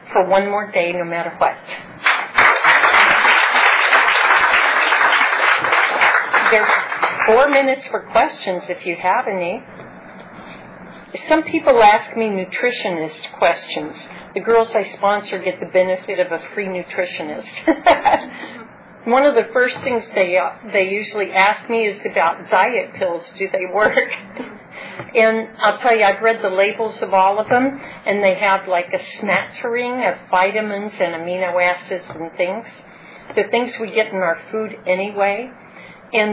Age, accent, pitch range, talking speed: 50-69, American, 185-225 Hz, 140 wpm